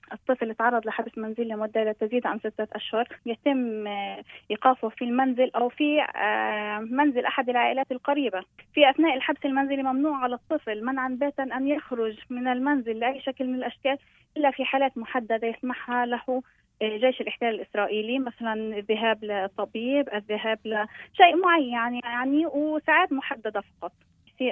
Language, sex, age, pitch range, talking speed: Arabic, female, 20-39, 220-265 Hz, 140 wpm